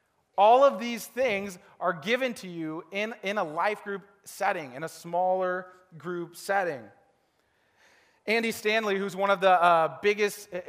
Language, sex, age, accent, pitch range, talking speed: English, male, 30-49, American, 155-195 Hz, 150 wpm